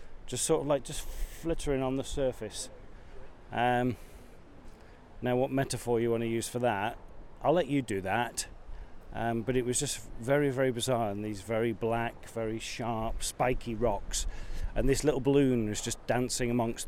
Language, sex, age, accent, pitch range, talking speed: English, male, 40-59, British, 95-125 Hz, 165 wpm